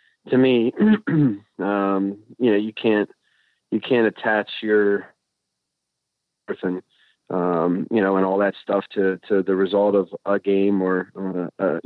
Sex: male